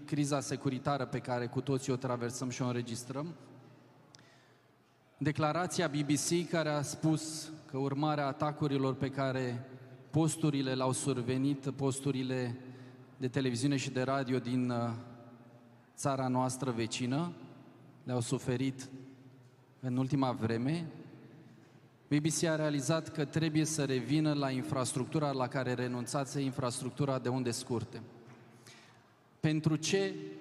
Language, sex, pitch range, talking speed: Romanian, male, 130-145 Hz, 110 wpm